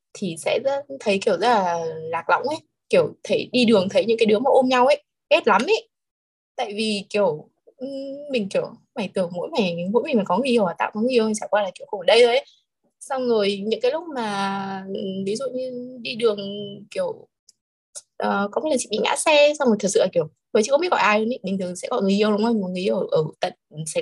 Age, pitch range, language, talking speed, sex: 20-39, 185-245 Hz, Vietnamese, 240 wpm, female